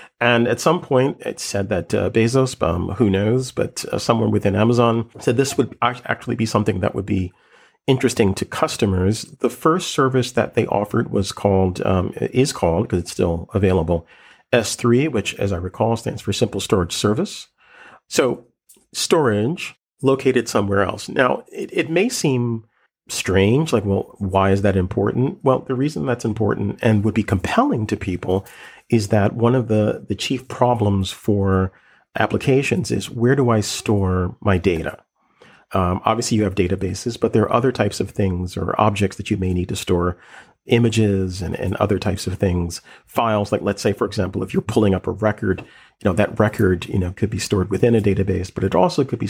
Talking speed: 190 wpm